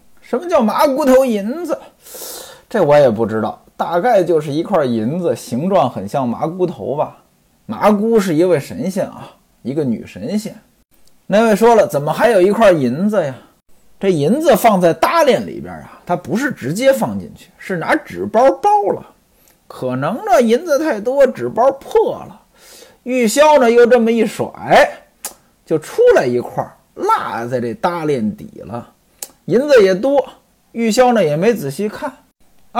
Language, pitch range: Chinese, 175-255 Hz